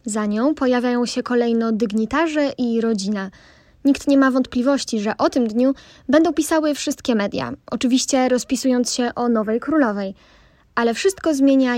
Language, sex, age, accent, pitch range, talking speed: Polish, female, 20-39, native, 230-285 Hz, 150 wpm